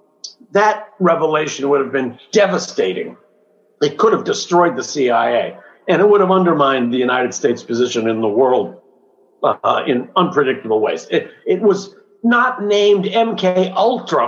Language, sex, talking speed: English, male, 145 wpm